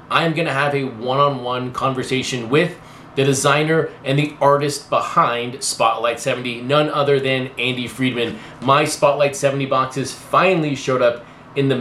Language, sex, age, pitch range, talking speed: English, male, 20-39, 125-145 Hz, 150 wpm